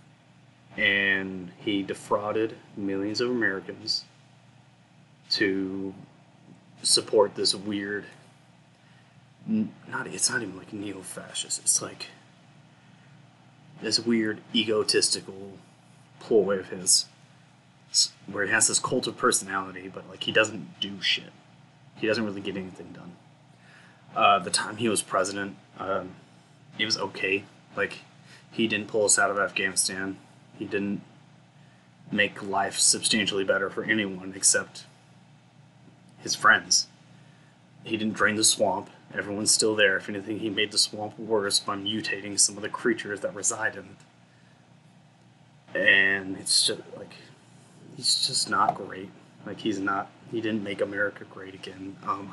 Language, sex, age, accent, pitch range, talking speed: English, male, 30-49, American, 95-155 Hz, 130 wpm